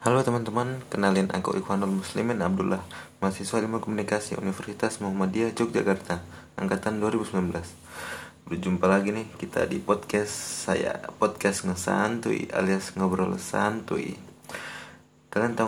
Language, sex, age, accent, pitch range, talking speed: Indonesian, male, 20-39, native, 95-105 Hz, 115 wpm